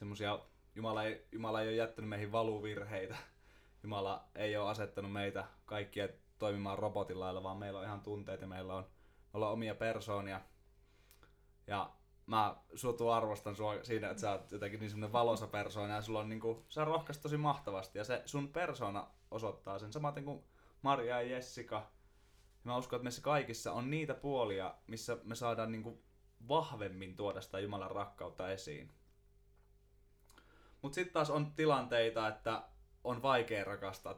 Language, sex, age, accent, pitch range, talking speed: Finnish, male, 20-39, native, 100-125 Hz, 150 wpm